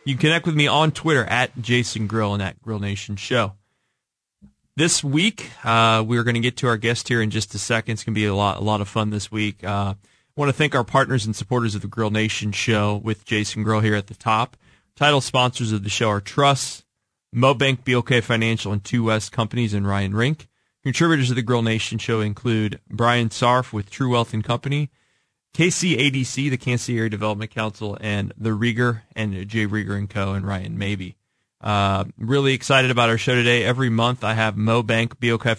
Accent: American